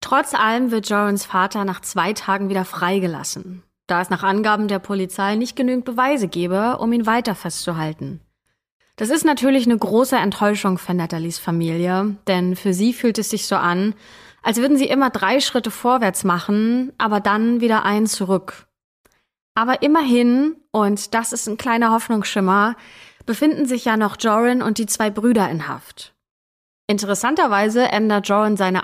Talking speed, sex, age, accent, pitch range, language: 160 wpm, female, 20-39, German, 185-235 Hz, German